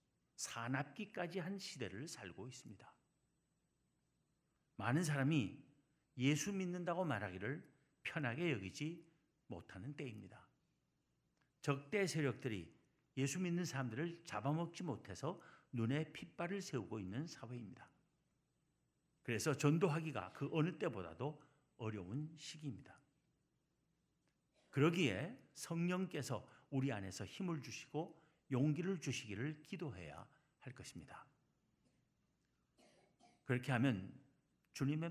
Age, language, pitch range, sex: 50-69, Korean, 120-165 Hz, male